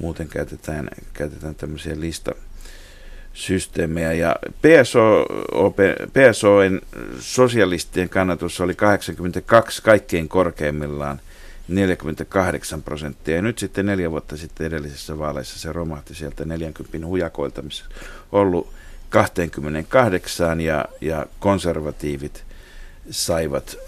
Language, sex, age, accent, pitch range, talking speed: Finnish, male, 50-69, native, 75-90 Hz, 85 wpm